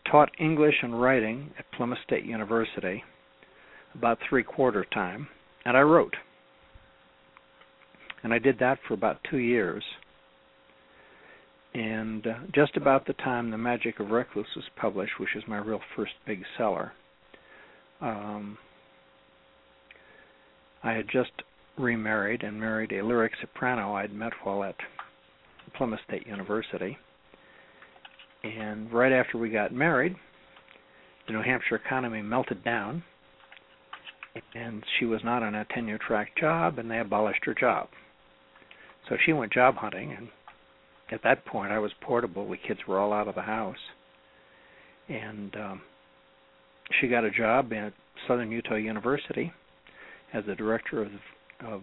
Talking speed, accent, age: 140 wpm, American, 60-79